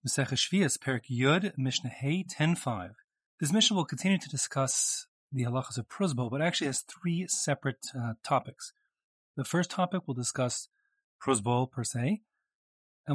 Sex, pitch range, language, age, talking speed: male, 115-150 Hz, English, 30-49, 130 wpm